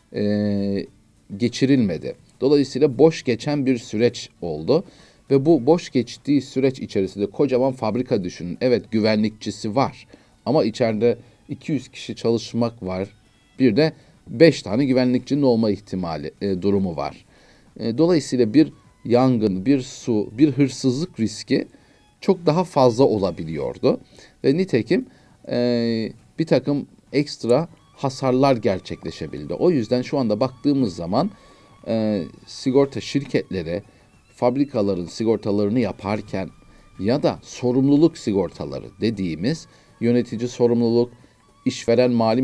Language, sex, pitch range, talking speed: Turkish, male, 105-135 Hz, 110 wpm